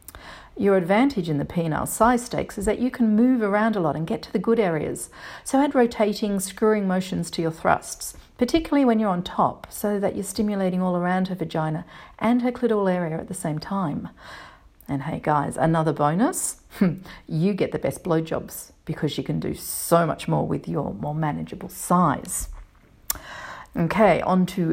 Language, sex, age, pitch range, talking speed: English, female, 40-59, 160-225 Hz, 180 wpm